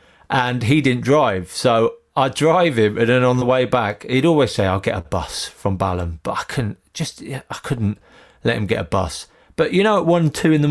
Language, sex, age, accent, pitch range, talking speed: English, male, 40-59, British, 105-135 Hz, 235 wpm